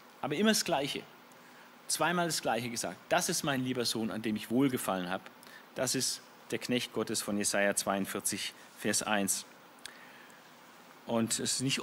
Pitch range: 110-145 Hz